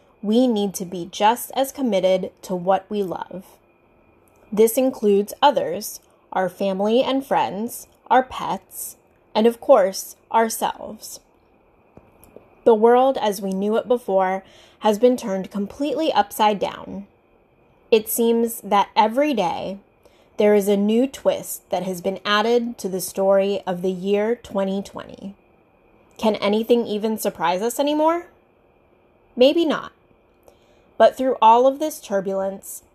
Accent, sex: American, female